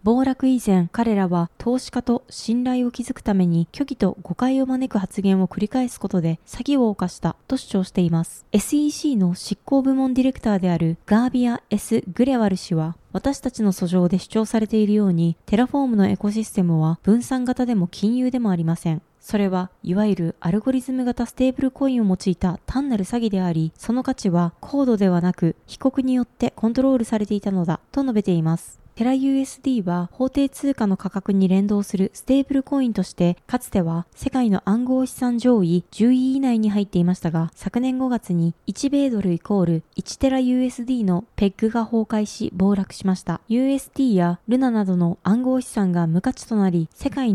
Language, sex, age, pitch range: Japanese, female, 20-39, 185-255 Hz